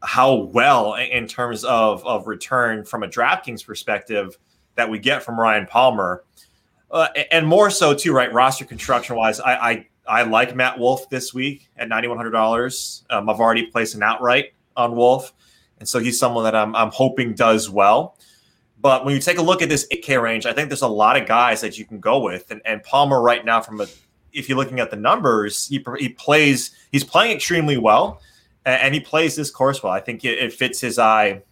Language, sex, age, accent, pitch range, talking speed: English, male, 20-39, American, 115-135 Hz, 205 wpm